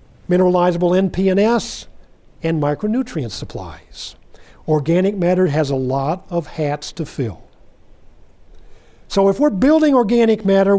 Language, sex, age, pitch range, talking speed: English, male, 50-69, 135-200 Hz, 110 wpm